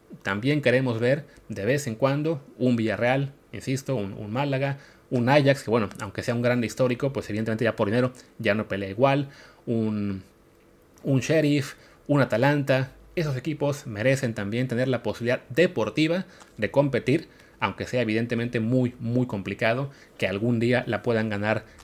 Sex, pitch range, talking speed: male, 110-140 Hz, 160 wpm